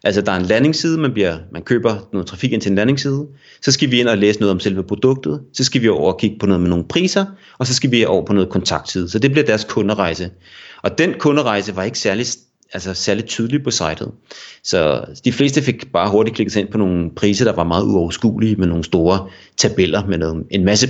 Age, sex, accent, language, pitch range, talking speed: 30-49, male, native, Danish, 105-140 Hz, 235 wpm